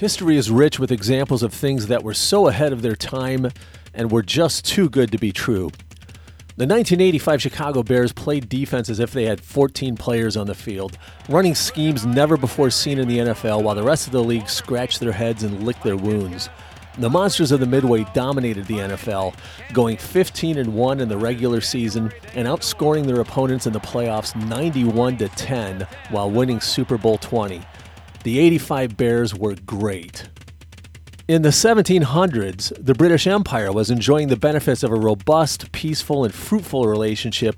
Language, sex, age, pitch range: English, male, 40-59, 110-140 Hz